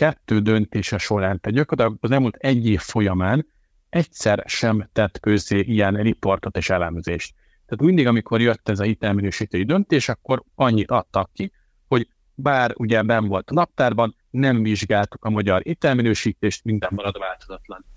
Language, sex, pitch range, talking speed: Hungarian, male, 100-125 Hz, 150 wpm